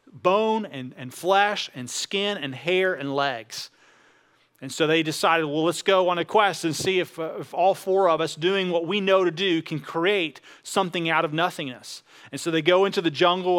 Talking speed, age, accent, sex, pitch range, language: 210 wpm, 30-49, American, male, 165-200 Hz, English